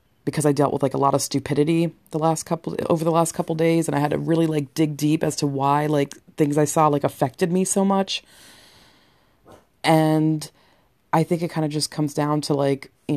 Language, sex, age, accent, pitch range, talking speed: English, female, 20-39, American, 135-160 Hz, 225 wpm